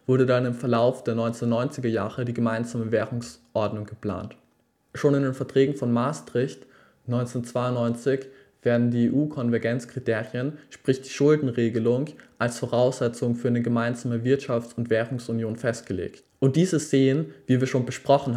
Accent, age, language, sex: German, 20-39, German, male